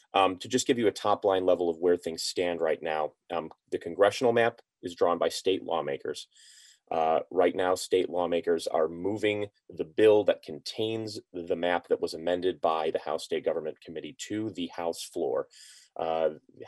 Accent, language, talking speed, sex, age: American, English, 180 wpm, male, 30-49